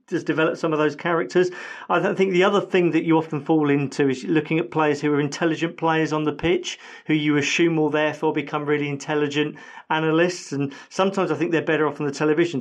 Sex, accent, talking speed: male, British, 220 wpm